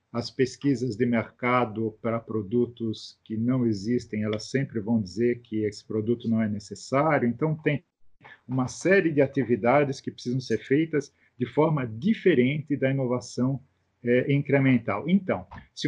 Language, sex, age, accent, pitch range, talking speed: Portuguese, male, 50-69, Brazilian, 110-135 Hz, 140 wpm